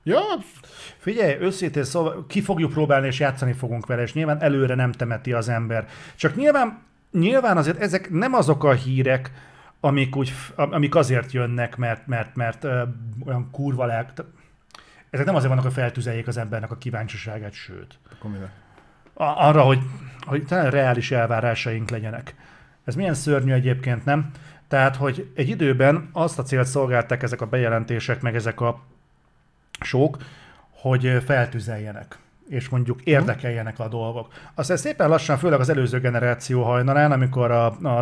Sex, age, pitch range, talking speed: male, 40-59, 120-150 Hz, 150 wpm